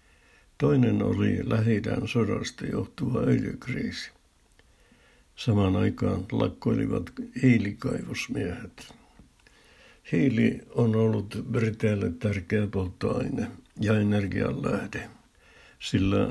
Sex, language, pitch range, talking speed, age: male, Finnish, 100-115 Hz, 75 wpm, 60-79